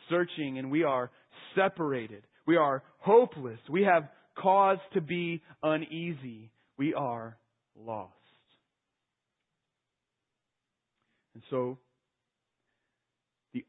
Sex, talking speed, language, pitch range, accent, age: male, 90 wpm, English, 130-215 Hz, American, 30-49